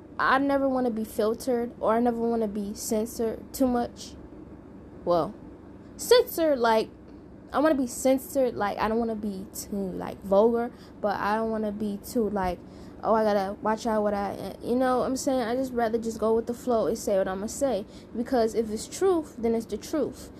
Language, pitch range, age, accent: English, 215-265 Hz, 10-29, American